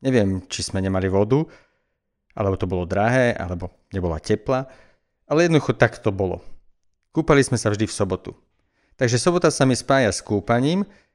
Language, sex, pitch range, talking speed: Slovak, male, 110-145 Hz, 160 wpm